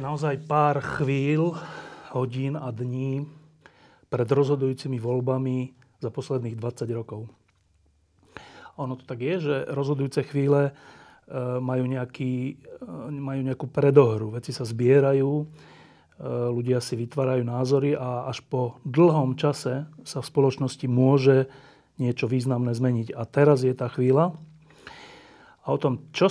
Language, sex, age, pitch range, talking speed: Slovak, male, 40-59, 125-145 Hz, 120 wpm